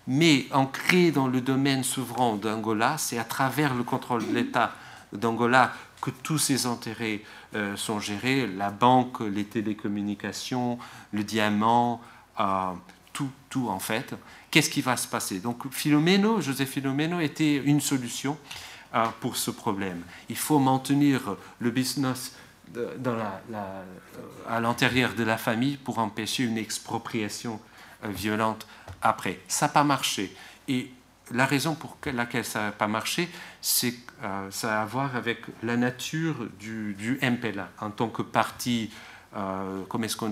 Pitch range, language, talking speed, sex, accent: 110-135 Hz, French, 150 wpm, male, French